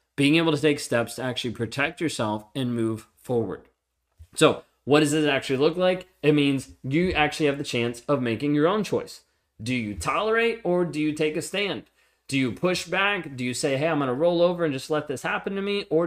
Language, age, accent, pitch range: English, 30-49, American, 125-165 Hz